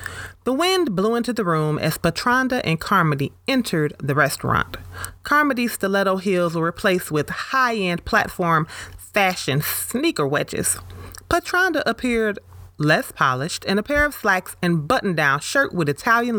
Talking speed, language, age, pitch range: 140 wpm, English, 30-49, 140-220 Hz